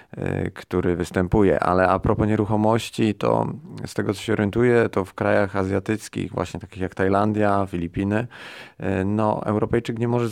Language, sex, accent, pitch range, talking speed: Polish, male, native, 95-110 Hz, 145 wpm